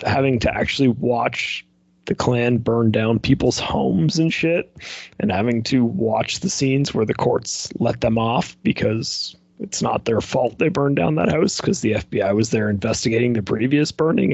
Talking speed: 180 wpm